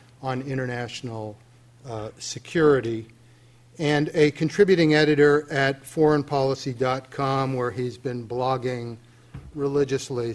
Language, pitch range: English, 120-150 Hz